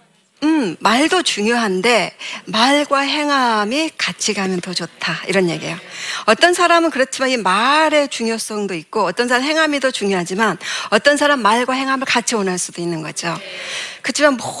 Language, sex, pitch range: Korean, female, 190-275 Hz